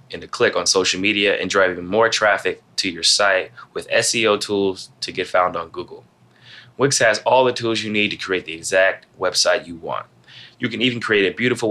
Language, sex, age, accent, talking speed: English, male, 20-39, American, 215 wpm